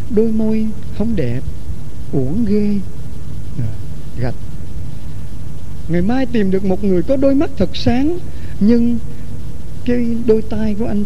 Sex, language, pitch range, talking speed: male, Vietnamese, 175-245 Hz, 130 wpm